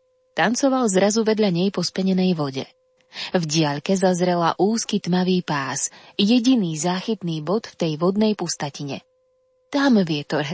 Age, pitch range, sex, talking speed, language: 20-39, 175-280 Hz, female, 125 wpm, Slovak